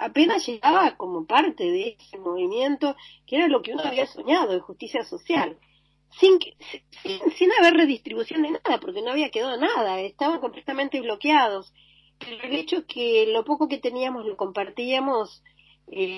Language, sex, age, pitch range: Spanish, female, 40-59, 185-300 Hz